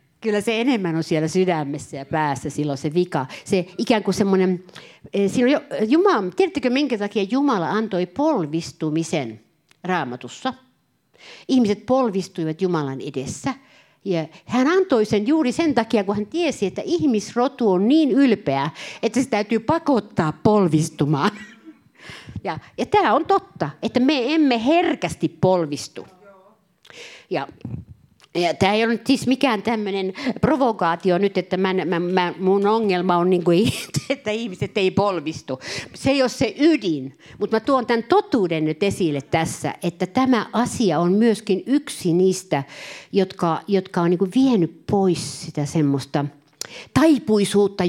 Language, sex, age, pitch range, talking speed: Finnish, female, 50-69, 165-245 Hz, 135 wpm